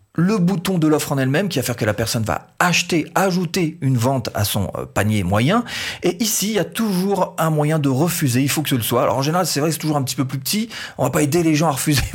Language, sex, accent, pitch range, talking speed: French, male, French, 120-160 Hz, 285 wpm